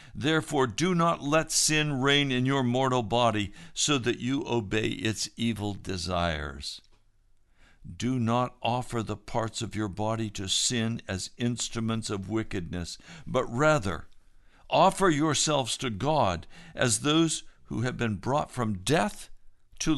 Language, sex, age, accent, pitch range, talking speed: English, male, 60-79, American, 100-145 Hz, 140 wpm